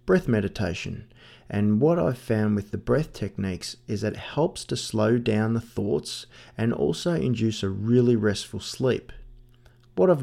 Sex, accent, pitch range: male, Australian, 100-125 Hz